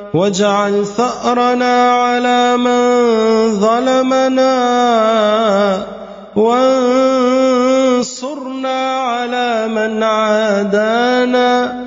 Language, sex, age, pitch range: Arabic, male, 30-49, 205-245 Hz